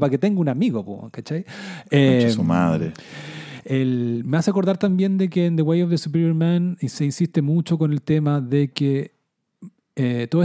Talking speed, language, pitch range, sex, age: 180 wpm, Spanish, 135-175 Hz, male, 40-59